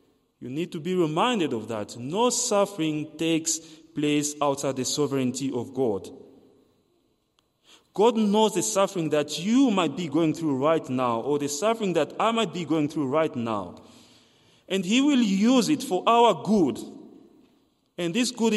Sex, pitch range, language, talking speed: male, 145-215 Hz, English, 160 wpm